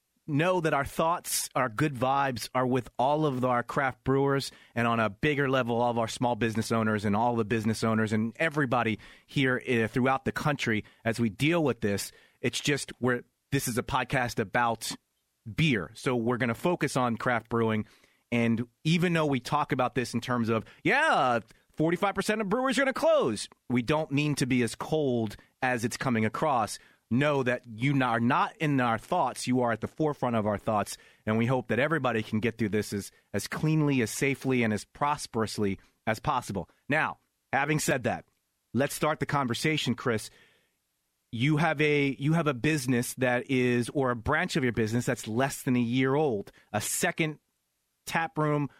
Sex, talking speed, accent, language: male, 195 wpm, American, English